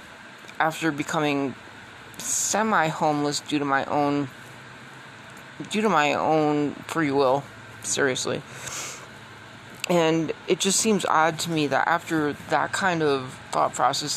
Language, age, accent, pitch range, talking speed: English, 20-39, American, 135-160 Hz, 120 wpm